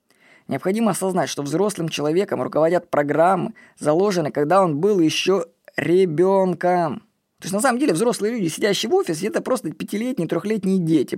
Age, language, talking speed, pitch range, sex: 20-39, Russian, 150 wpm, 150-200 Hz, female